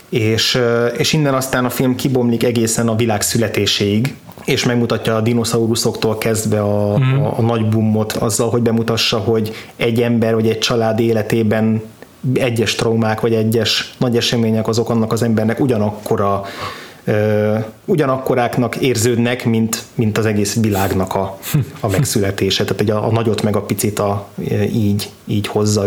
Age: 20-39